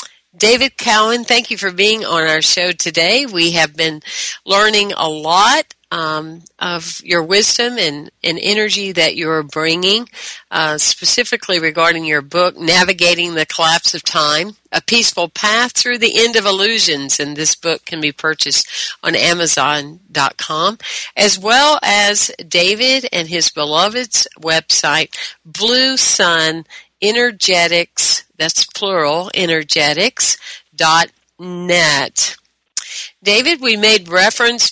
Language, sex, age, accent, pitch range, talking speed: English, female, 50-69, American, 160-210 Hz, 125 wpm